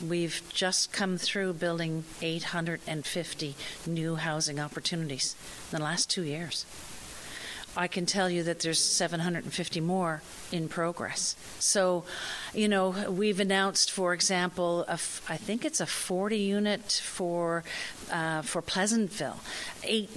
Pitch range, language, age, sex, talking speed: 165-200 Hz, English, 50-69, female, 130 wpm